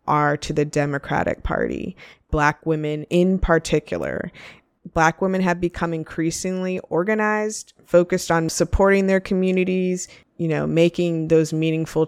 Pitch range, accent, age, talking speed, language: 150-175 Hz, American, 20-39, 125 wpm, English